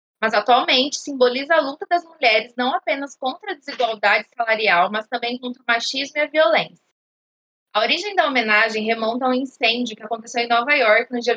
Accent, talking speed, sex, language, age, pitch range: Brazilian, 190 wpm, female, Portuguese, 20-39, 235-305 Hz